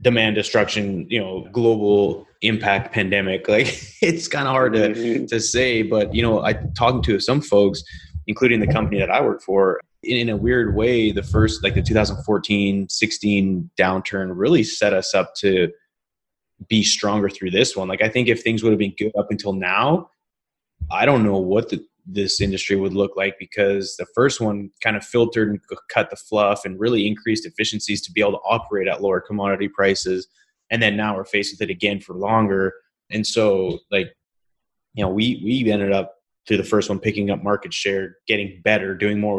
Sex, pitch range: male, 100-110 Hz